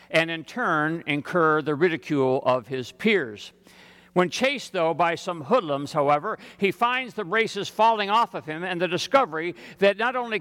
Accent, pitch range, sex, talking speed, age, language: American, 180-230 Hz, male, 175 wpm, 60-79, English